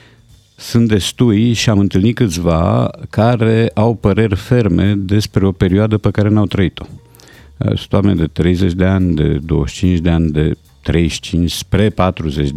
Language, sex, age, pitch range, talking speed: Romanian, male, 50-69, 85-105 Hz, 150 wpm